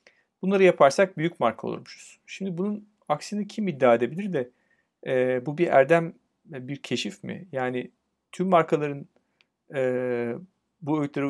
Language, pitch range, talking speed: Turkish, 125-180 Hz, 135 wpm